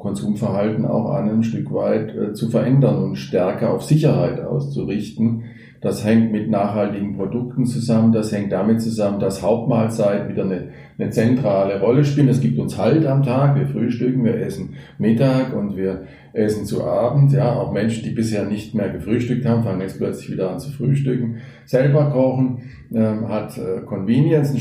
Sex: male